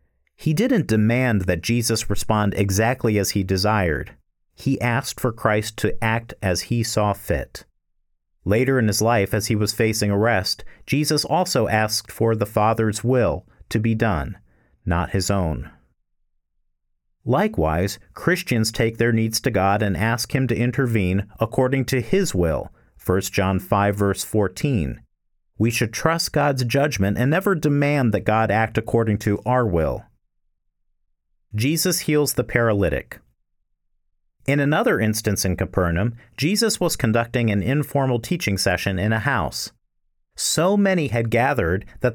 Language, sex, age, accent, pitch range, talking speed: English, male, 50-69, American, 100-130 Hz, 145 wpm